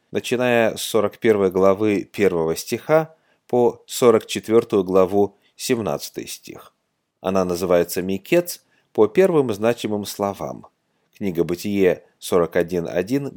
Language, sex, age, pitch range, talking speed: Russian, male, 30-49, 90-120 Hz, 95 wpm